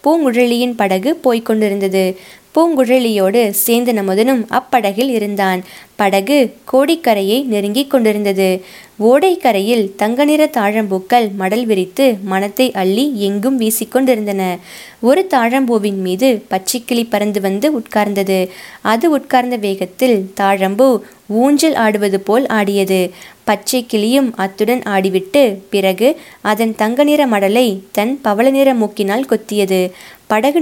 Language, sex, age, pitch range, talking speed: Tamil, female, 20-39, 200-255 Hz, 95 wpm